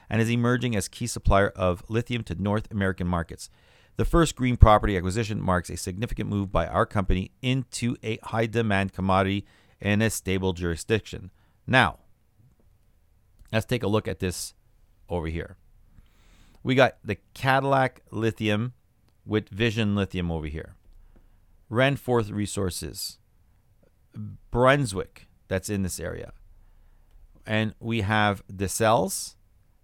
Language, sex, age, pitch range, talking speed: English, male, 40-59, 95-115 Hz, 125 wpm